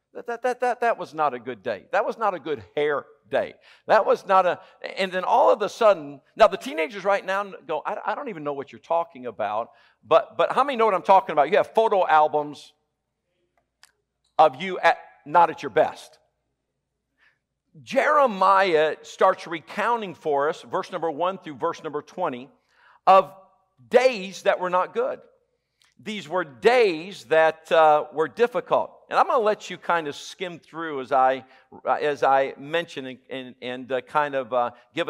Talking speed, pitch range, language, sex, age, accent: 190 wpm, 140-190 Hz, English, male, 50-69, American